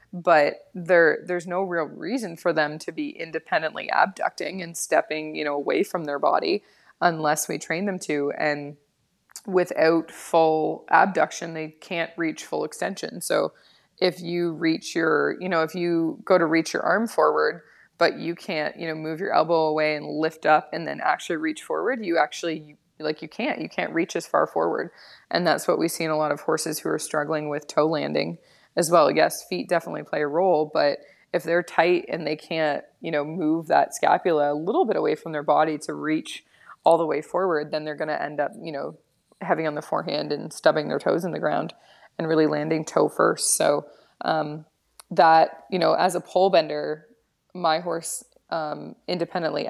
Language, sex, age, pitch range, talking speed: English, female, 20-39, 155-175 Hz, 195 wpm